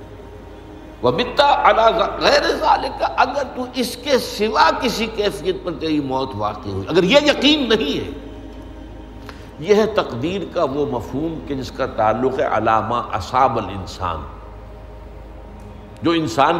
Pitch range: 105-160 Hz